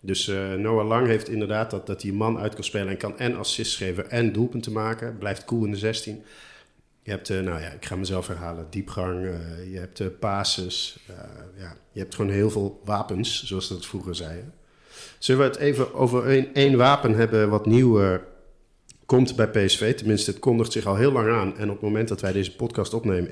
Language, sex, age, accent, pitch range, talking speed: Dutch, male, 50-69, Dutch, 95-115 Hz, 210 wpm